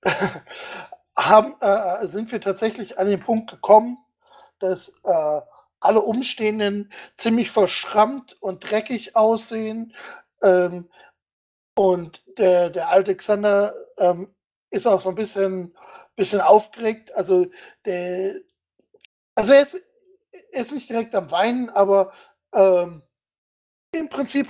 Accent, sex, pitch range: German, male, 195-250 Hz